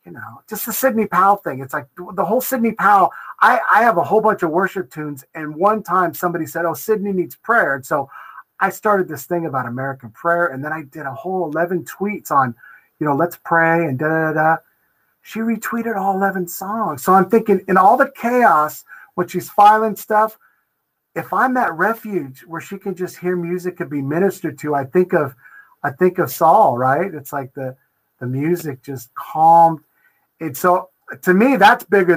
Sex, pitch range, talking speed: male, 145-195 Hz, 200 wpm